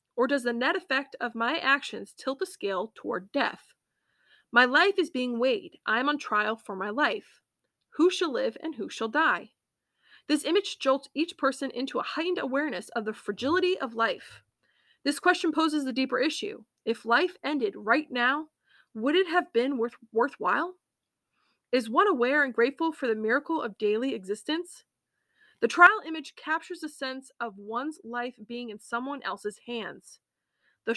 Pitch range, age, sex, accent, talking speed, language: 235-325 Hz, 20-39, female, American, 170 wpm, English